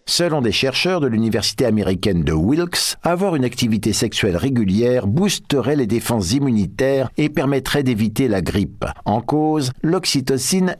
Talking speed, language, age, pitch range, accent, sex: 140 wpm, French, 50-69, 115-170 Hz, French, male